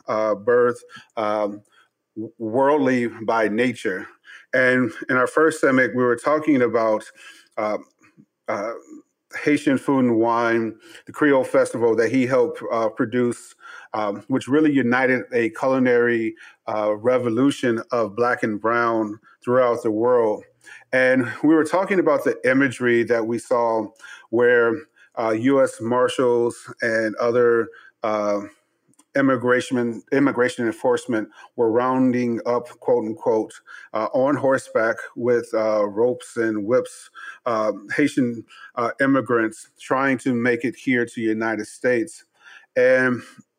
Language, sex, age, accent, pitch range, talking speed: English, male, 30-49, American, 115-140 Hz, 125 wpm